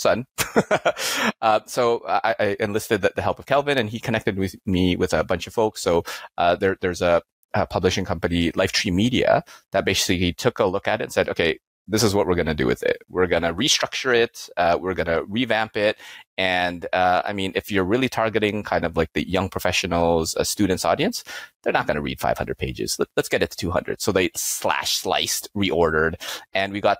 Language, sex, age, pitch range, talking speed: English, male, 30-49, 90-120 Hz, 215 wpm